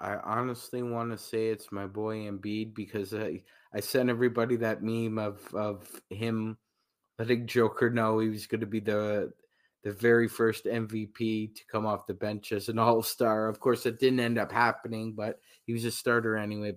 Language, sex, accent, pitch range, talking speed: English, male, American, 105-115 Hz, 190 wpm